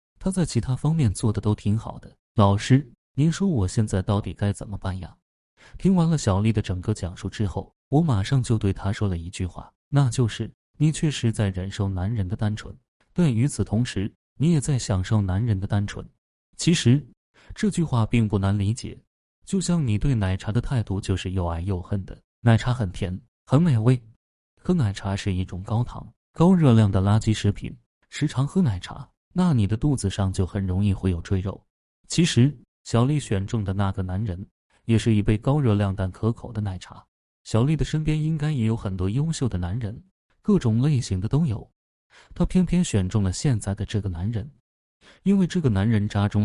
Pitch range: 100-130 Hz